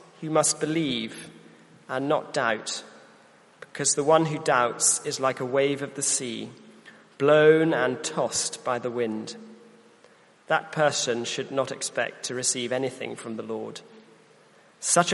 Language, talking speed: English, 145 wpm